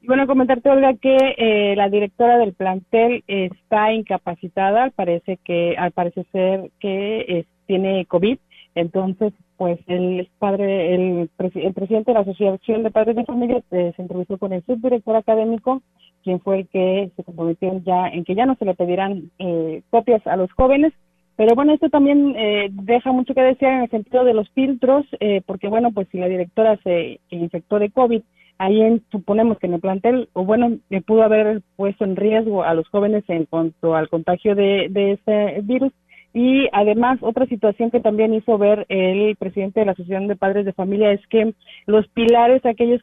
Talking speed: 185 wpm